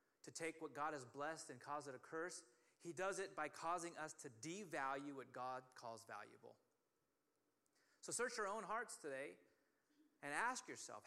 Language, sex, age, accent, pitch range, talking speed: English, male, 30-49, American, 140-185 Hz, 175 wpm